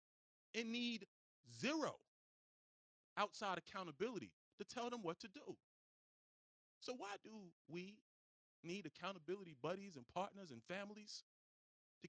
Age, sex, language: 30-49, male, English